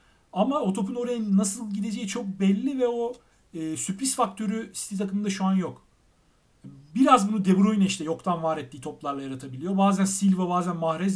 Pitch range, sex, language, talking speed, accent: 165-220 Hz, male, Turkish, 170 wpm, native